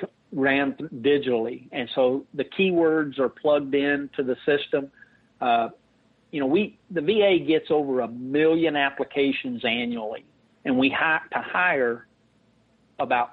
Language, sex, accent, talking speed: English, male, American, 135 wpm